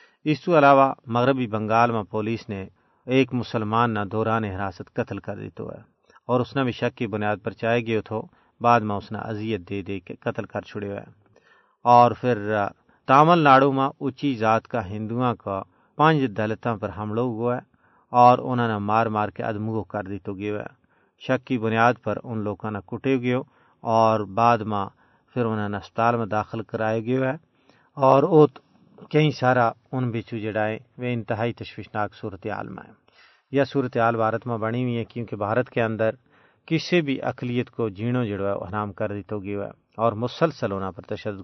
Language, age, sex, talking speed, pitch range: Urdu, 40-59, male, 185 wpm, 105-125 Hz